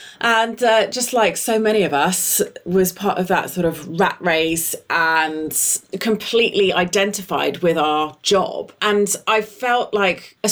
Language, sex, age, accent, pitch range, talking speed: English, female, 30-49, British, 155-195 Hz, 155 wpm